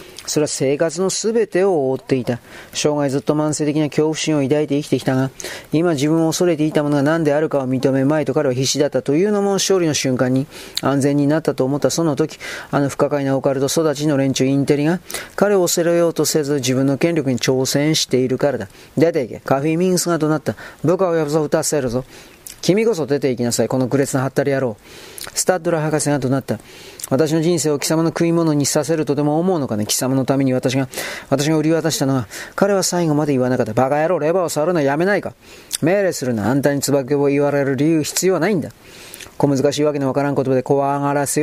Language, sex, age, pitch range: Japanese, male, 40-59, 135-160 Hz